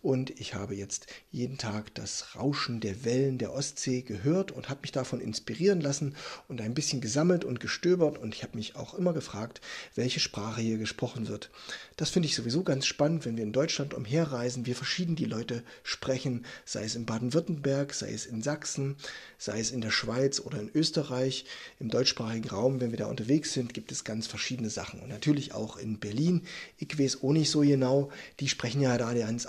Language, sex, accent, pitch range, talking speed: German, male, German, 115-150 Hz, 200 wpm